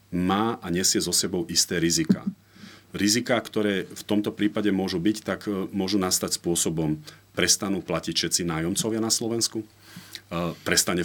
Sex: male